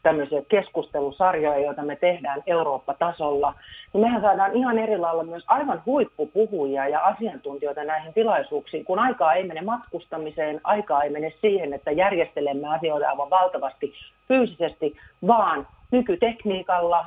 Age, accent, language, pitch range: 40-59, native, Finnish, 145-205 Hz